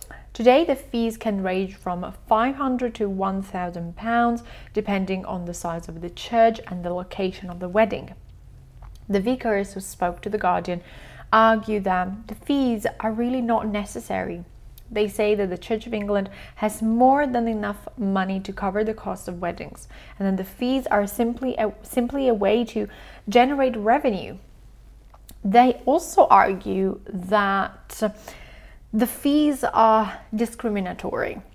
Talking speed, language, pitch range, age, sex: 145 wpm, Italian, 190-235 Hz, 30-49, female